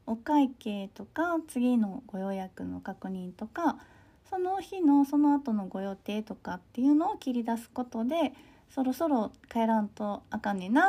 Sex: female